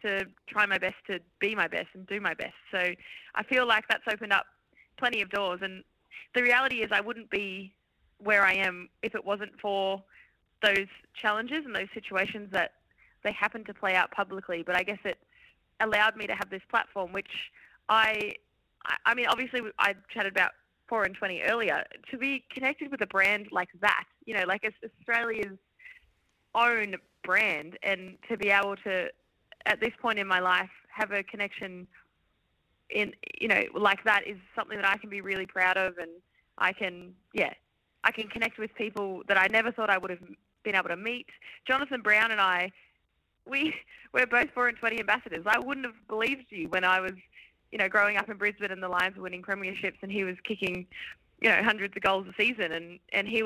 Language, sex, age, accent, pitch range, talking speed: English, female, 20-39, Australian, 190-225 Hz, 200 wpm